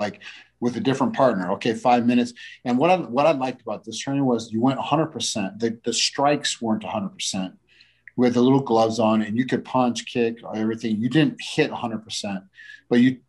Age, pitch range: 40-59, 105-125 Hz